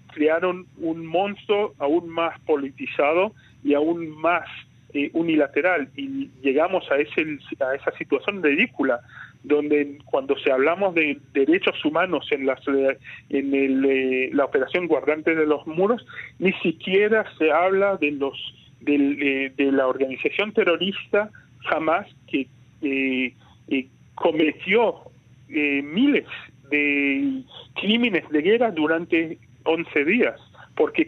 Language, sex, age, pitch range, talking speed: Spanish, male, 40-59, 140-190 Hz, 125 wpm